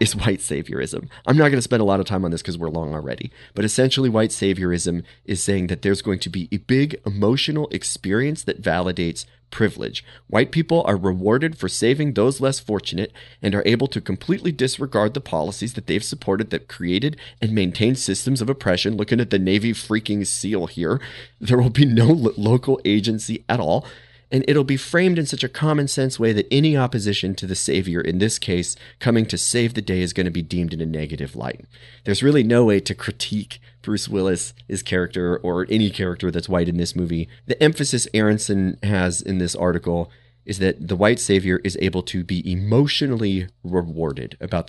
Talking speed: 195 wpm